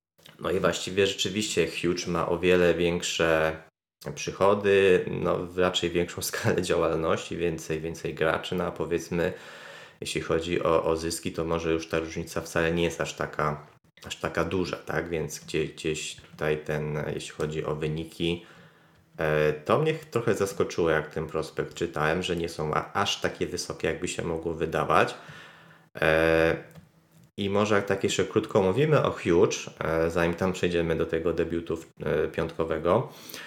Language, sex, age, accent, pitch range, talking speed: Polish, male, 20-39, native, 80-100 Hz, 150 wpm